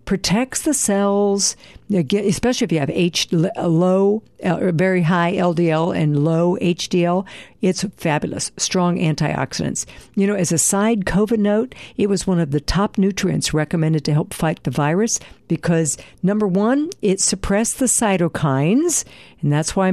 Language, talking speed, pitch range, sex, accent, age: English, 150 wpm, 170-215 Hz, female, American, 60-79